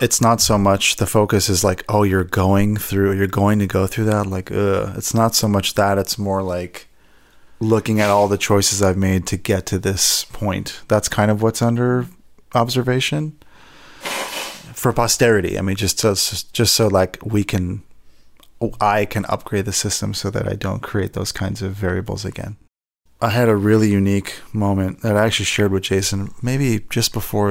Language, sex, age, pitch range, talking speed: English, male, 30-49, 95-110 Hz, 185 wpm